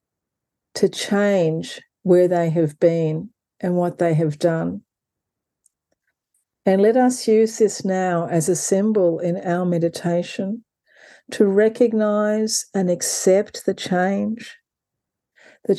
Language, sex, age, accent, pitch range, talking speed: English, female, 50-69, Australian, 180-215 Hz, 115 wpm